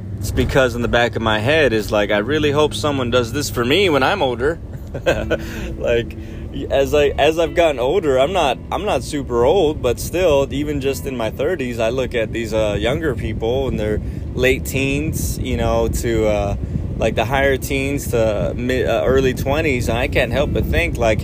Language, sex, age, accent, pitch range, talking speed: English, male, 20-39, American, 110-130 Hz, 205 wpm